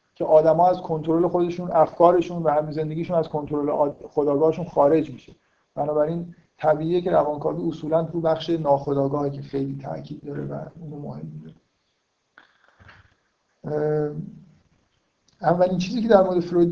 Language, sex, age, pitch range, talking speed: Persian, male, 50-69, 145-170 Hz, 125 wpm